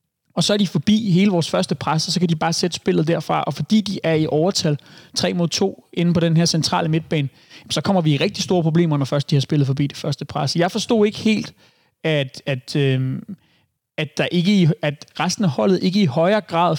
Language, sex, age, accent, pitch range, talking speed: Danish, male, 30-49, native, 145-175 Hz, 230 wpm